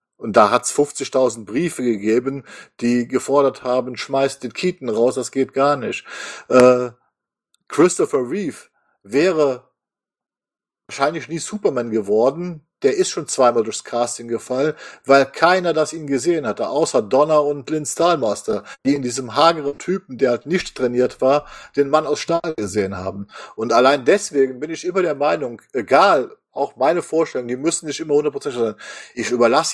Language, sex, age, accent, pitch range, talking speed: German, male, 50-69, German, 130-180 Hz, 160 wpm